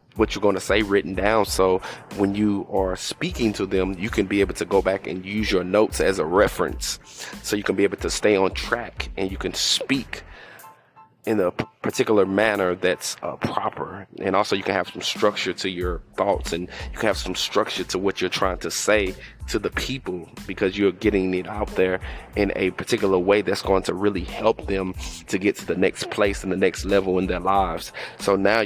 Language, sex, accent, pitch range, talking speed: English, male, American, 90-100 Hz, 220 wpm